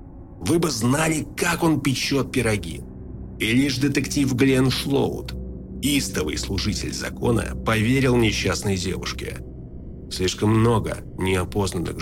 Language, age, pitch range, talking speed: Russian, 30-49, 65-105 Hz, 105 wpm